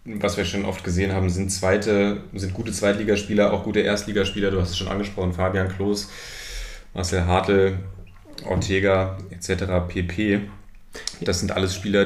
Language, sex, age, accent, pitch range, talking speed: German, male, 30-49, German, 95-100 Hz, 150 wpm